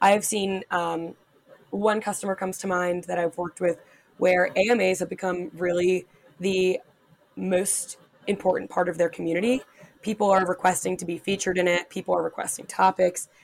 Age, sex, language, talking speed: 20-39, female, English, 160 wpm